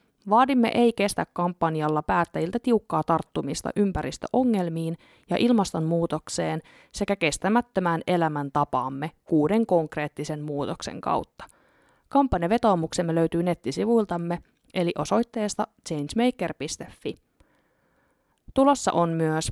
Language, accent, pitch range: Finnish, native, 160-230 Hz